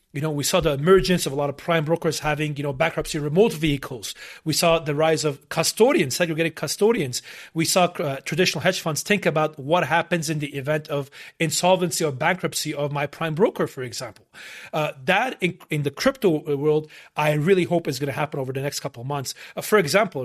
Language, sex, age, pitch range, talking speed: English, male, 30-49, 145-175 Hz, 215 wpm